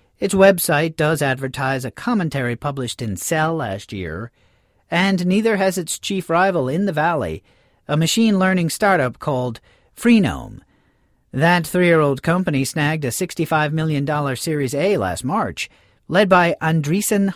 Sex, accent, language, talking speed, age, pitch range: male, American, English, 135 wpm, 40-59, 120-180 Hz